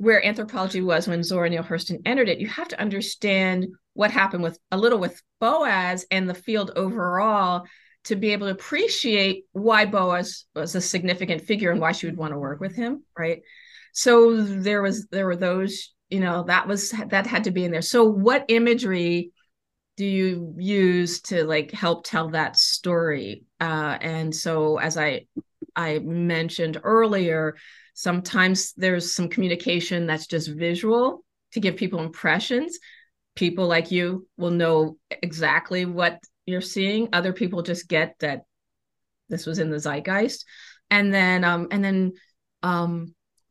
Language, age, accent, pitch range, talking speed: English, 30-49, American, 170-215 Hz, 160 wpm